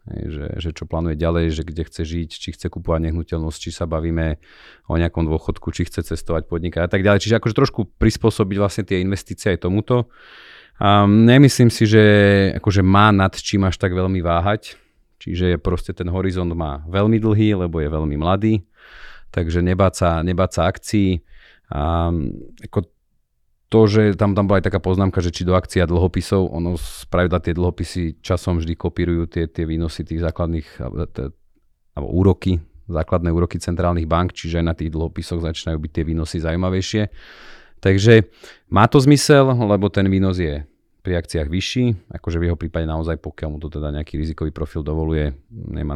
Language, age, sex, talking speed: Slovak, 40-59, male, 170 wpm